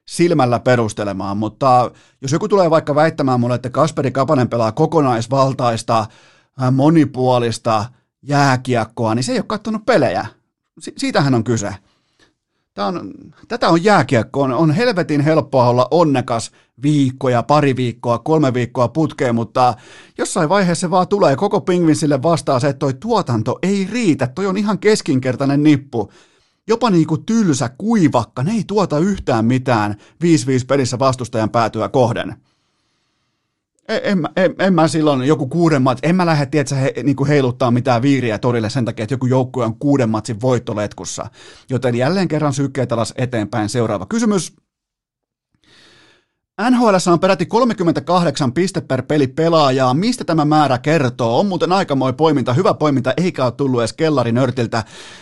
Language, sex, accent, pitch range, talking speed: Finnish, male, native, 125-165 Hz, 145 wpm